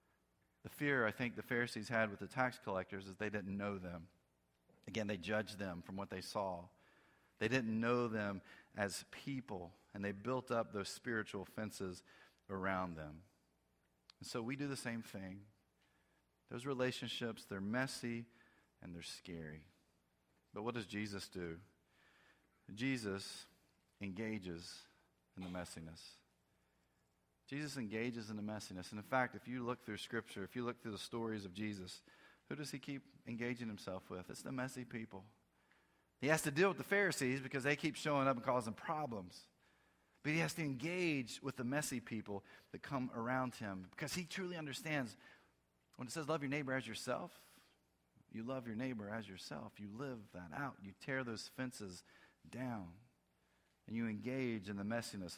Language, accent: English, American